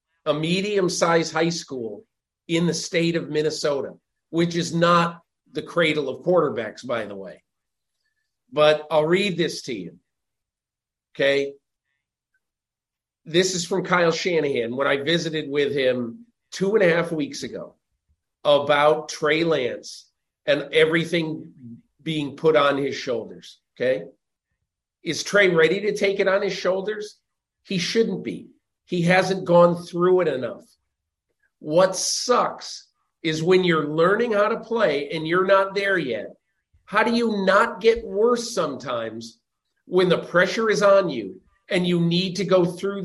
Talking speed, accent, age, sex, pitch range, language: 145 wpm, American, 50-69, male, 160-200 Hz, English